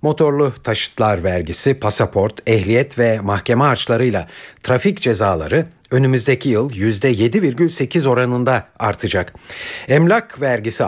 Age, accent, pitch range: 60-79, native, 110-155 Hz